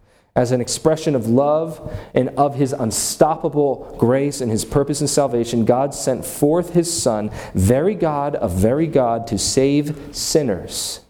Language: English